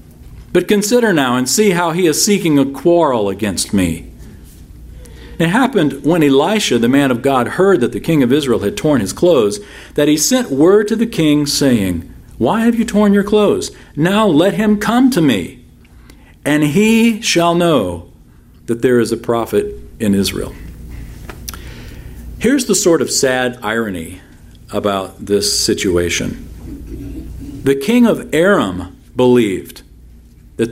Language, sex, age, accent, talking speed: English, male, 50-69, American, 150 wpm